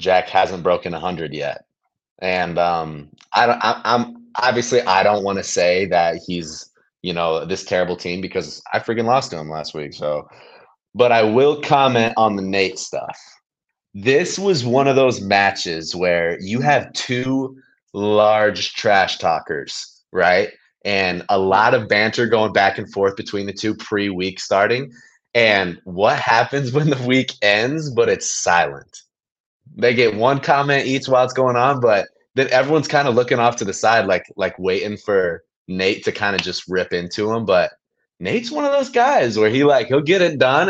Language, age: English, 30-49